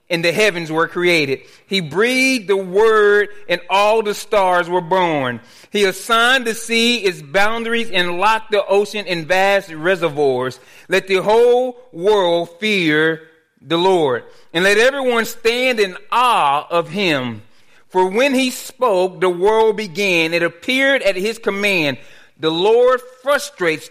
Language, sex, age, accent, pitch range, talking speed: English, male, 40-59, American, 175-225 Hz, 145 wpm